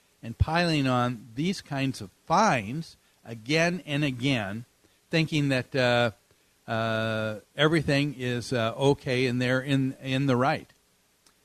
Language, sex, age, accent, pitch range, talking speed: English, male, 50-69, American, 130-180 Hz, 130 wpm